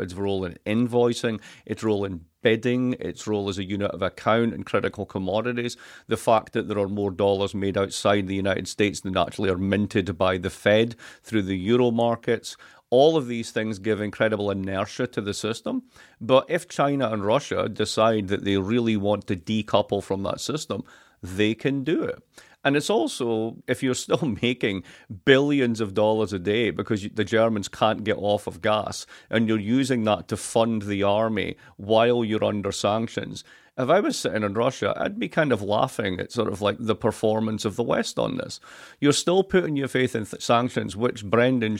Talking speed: 190 wpm